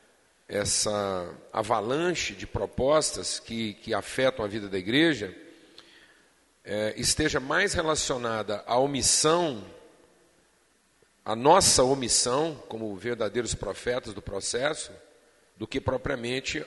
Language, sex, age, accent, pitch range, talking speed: Portuguese, male, 40-59, Brazilian, 115-150 Hz, 95 wpm